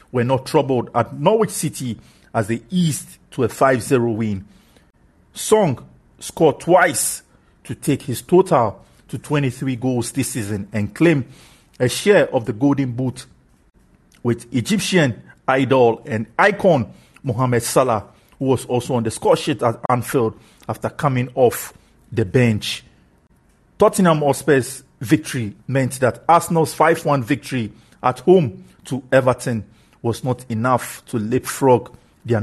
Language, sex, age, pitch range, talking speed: English, male, 50-69, 115-145 Hz, 135 wpm